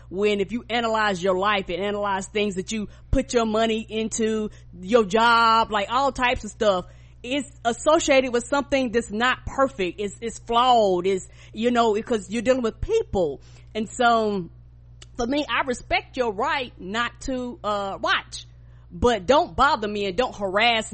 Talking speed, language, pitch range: 170 wpm, English, 195-245 Hz